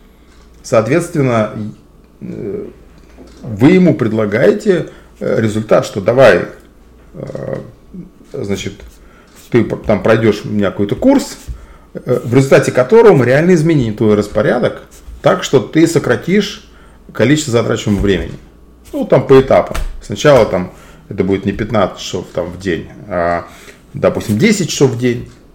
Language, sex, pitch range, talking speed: Russian, male, 100-135 Hz, 110 wpm